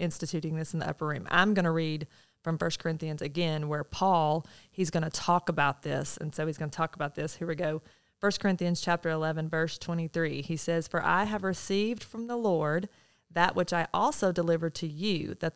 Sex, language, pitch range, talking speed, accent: female, English, 160-180 Hz, 215 wpm, American